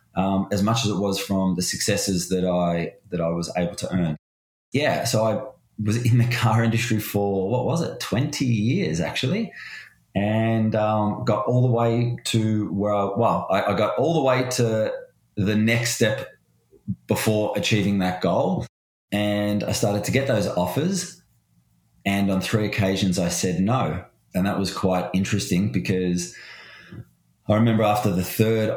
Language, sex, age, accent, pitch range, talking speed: English, male, 20-39, Australian, 90-110 Hz, 170 wpm